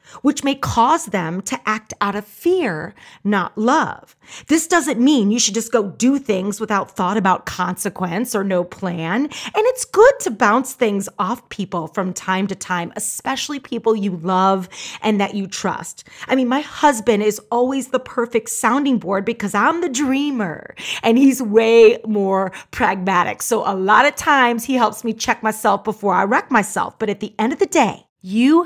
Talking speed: 185 wpm